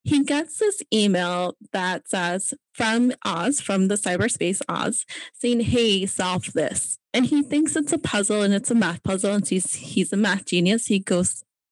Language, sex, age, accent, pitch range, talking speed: English, female, 10-29, American, 180-225 Hz, 180 wpm